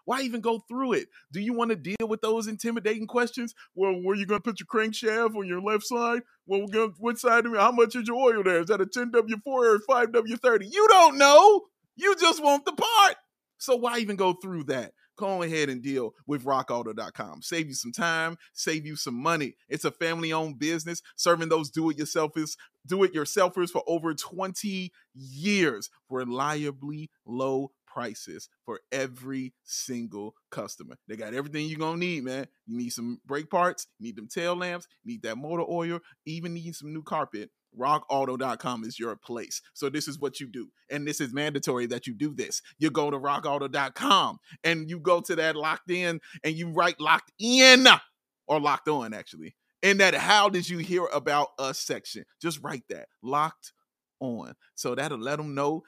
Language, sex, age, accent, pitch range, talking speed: English, male, 30-49, American, 145-220 Hz, 190 wpm